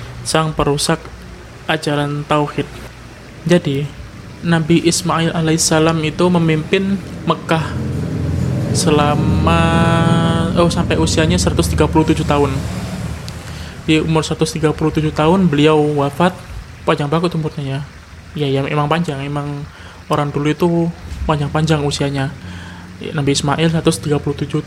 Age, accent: 20-39, native